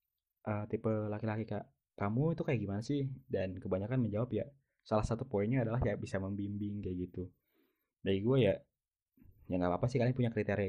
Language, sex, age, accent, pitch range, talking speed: Indonesian, male, 20-39, native, 100-125 Hz, 180 wpm